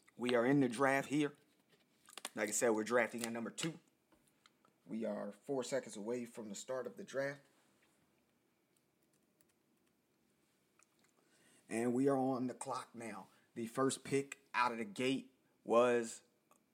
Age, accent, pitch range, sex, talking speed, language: 30-49, American, 110-125 Hz, male, 145 wpm, English